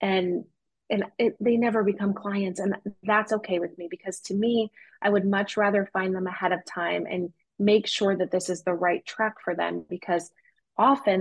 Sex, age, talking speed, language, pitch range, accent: female, 20-39, 200 wpm, English, 180-210 Hz, American